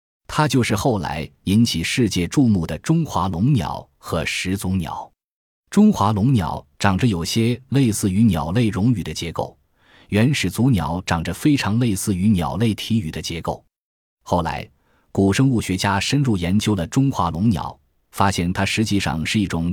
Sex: male